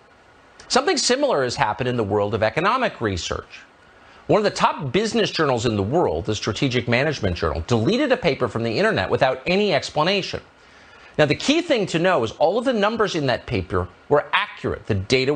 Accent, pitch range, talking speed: American, 110-175 Hz, 195 wpm